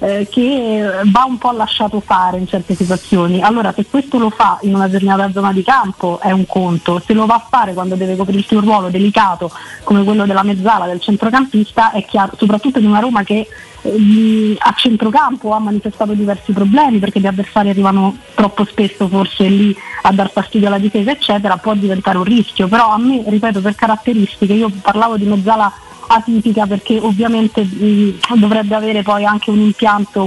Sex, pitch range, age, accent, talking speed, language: female, 195-220 Hz, 20-39, native, 180 wpm, Italian